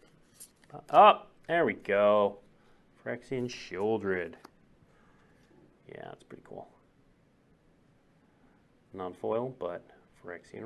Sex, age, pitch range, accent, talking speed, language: male, 30-49, 110-135 Hz, American, 75 wpm, English